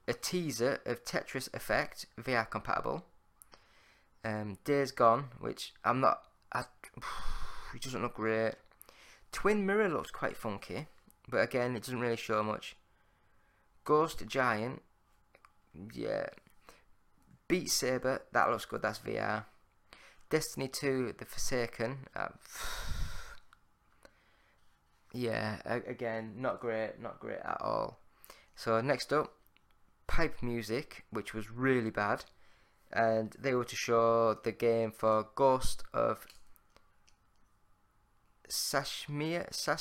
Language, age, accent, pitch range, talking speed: English, 20-39, British, 105-130 Hz, 110 wpm